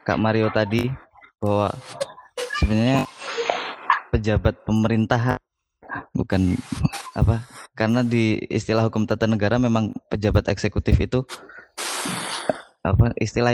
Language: Indonesian